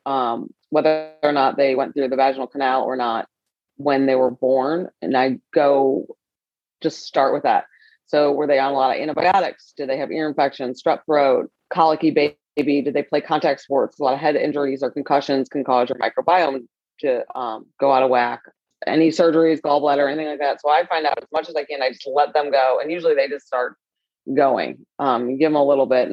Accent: American